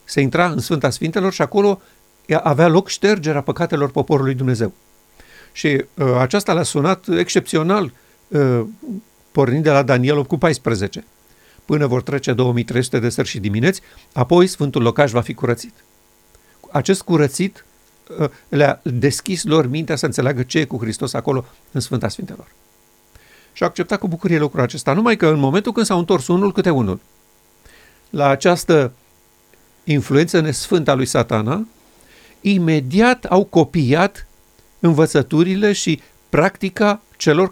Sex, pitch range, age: male, 125-185 Hz, 50-69